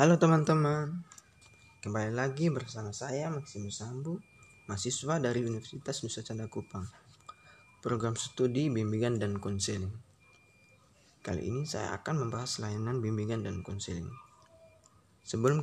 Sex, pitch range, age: male, 105-140 Hz, 20-39